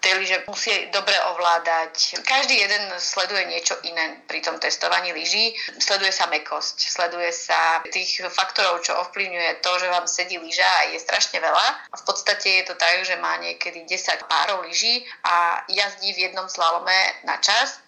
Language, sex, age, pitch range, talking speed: Slovak, female, 30-49, 165-190 Hz, 170 wpm